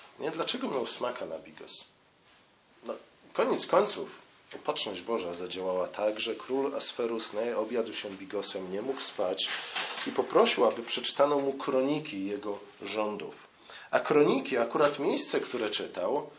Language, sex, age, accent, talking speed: Polish, male, 40-59, native, 130 wpm